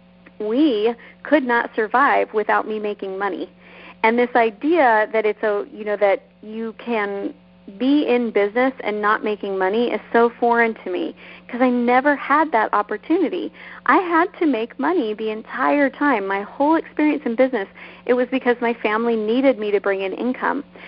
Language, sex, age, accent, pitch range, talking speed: English, female, 40-59, American, 210-260 Hz, 175 wpm